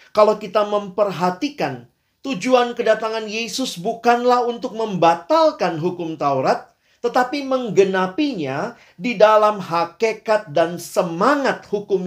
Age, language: 40-59, Indonesian